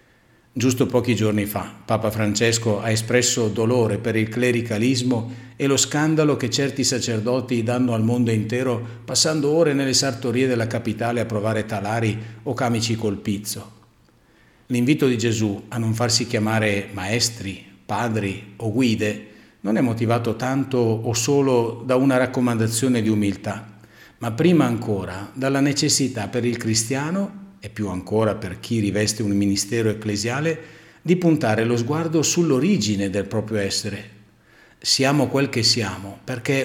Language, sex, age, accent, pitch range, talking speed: Italian, male, 50-69, native, 110-130 Hz, 140 wpm